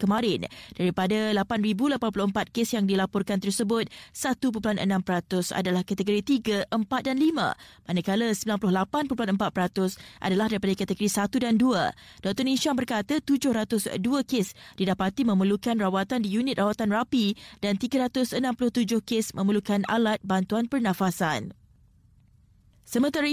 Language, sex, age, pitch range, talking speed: Malay, female, 20-39, 195-235 Hz, 110 wpm